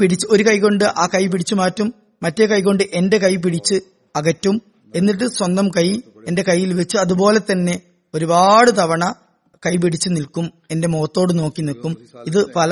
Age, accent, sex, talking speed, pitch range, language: 20-39, native, female, 150 wpm, 160-200 Hz, Malayalam